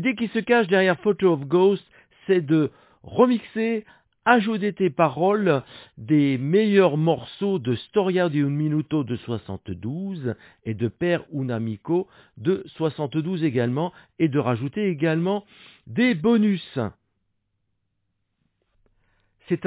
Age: 60-79